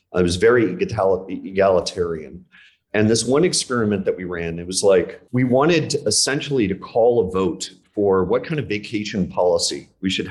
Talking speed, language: 170 wpm, English